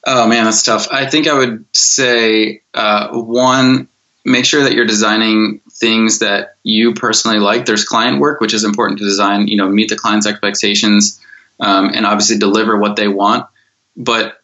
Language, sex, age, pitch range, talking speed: English, male, 20-39, 105-115 Hz, 175 wpm